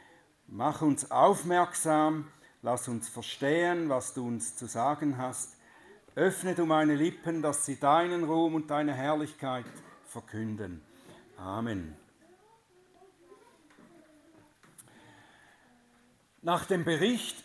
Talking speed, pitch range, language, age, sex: 95 wpm, 145-200 Hz, German, 60-79, male